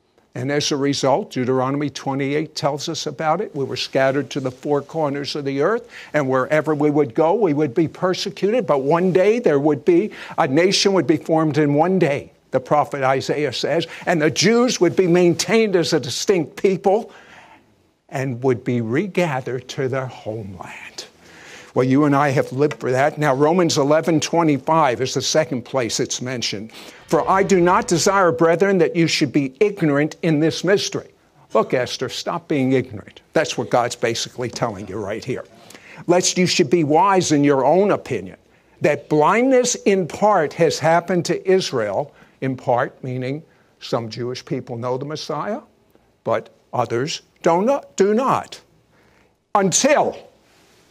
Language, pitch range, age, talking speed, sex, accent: English, 135-175 Hz, 60-79, 165 wpm, male, American